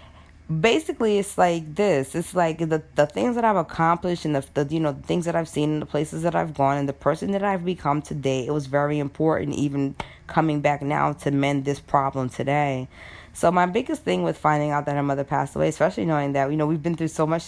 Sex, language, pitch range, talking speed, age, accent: female, English, 140-175 Hz, 240 wpm, 20-39, American